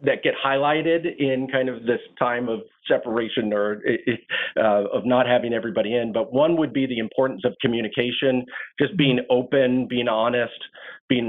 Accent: American